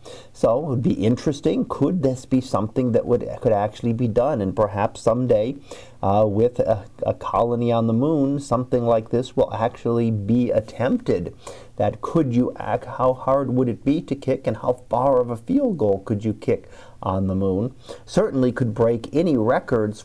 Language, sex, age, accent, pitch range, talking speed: English, male, 40-59, American, 110-130 Hz, 185 wpm